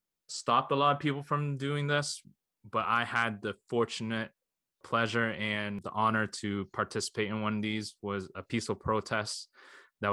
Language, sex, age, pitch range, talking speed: English, male, 20-39, 100-115 Hz, 165 wpm